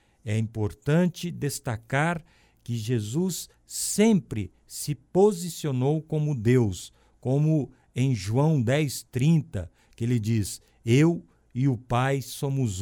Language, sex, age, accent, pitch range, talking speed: Portuguese, male, 50-69, Brazilian, 110-160 Hz, 105 wpm